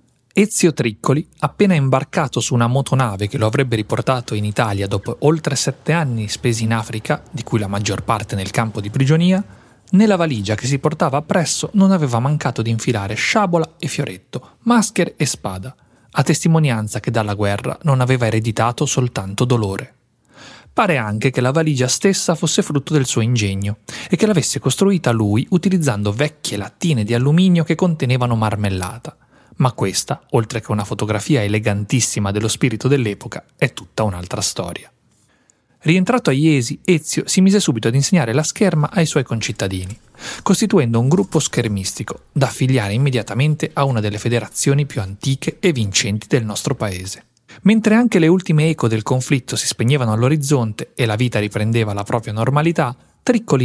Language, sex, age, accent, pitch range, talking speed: Italian, male, 30-49, native, 110-155 Hz, 160 wpm